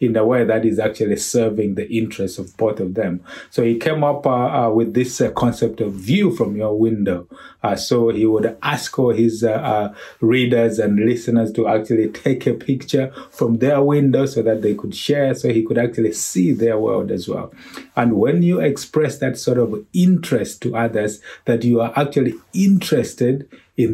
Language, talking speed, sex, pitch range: English, 195 wpm, male, 110-130 Hz